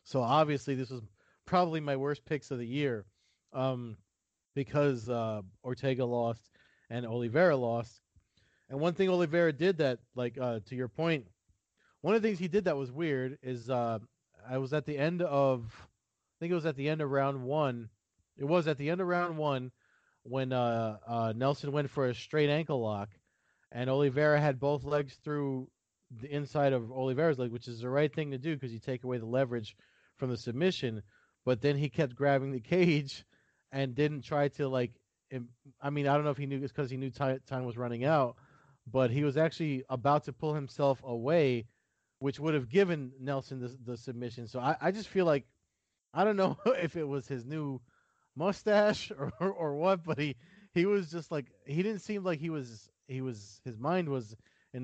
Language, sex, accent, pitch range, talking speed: English, male, American, 120-150 Hz, 200 wpm